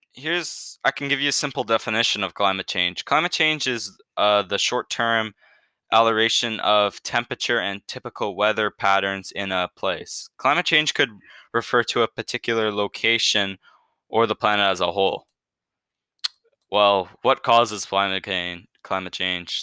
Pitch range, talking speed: 100-125 Hz, 140 wpm